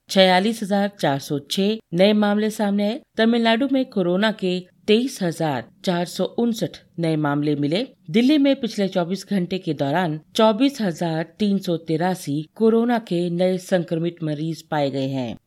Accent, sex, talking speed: native, female, 160 wpm